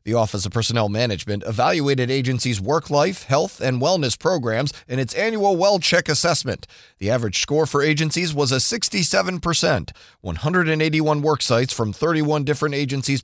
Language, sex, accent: English, male, American